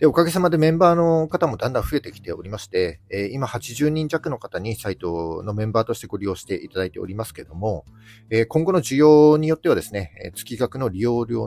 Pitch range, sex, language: 95-130 Hz, male, Japanese